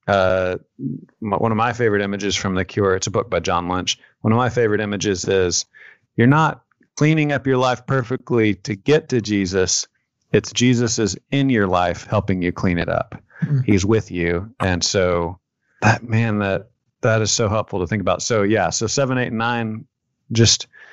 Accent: American